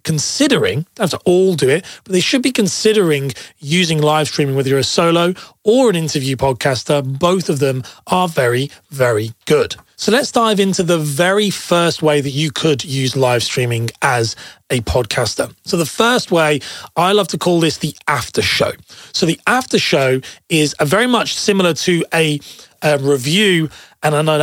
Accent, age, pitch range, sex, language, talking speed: British, 30-49, 145-190 Hz, male, English, 180 wpm